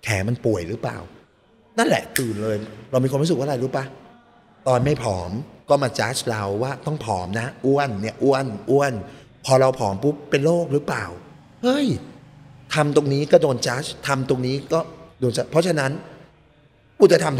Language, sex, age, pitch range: Thai, male, 30-49, 110-150 Hz